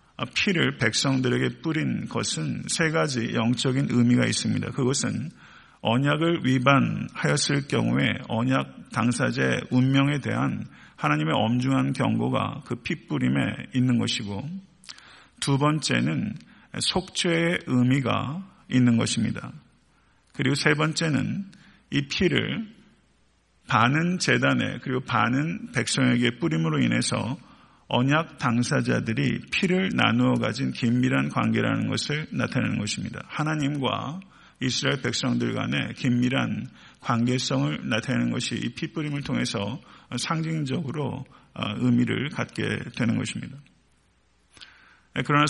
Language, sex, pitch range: Korean, male, 120-150 Hz